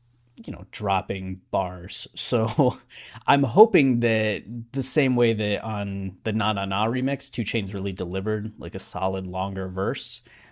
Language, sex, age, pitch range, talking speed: English, male, 20-39, 95-120 Hz, 155 wpm